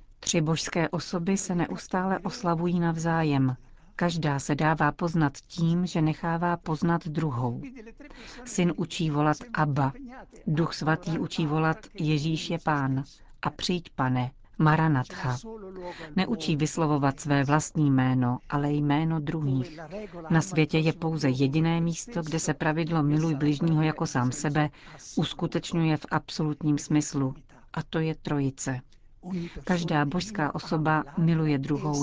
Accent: native